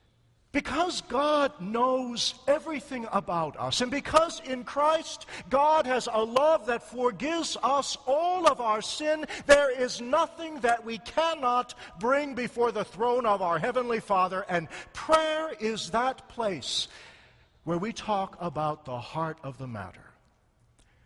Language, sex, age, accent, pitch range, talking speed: English, male, 50-69, American, 165-270 Hz, 140 wpm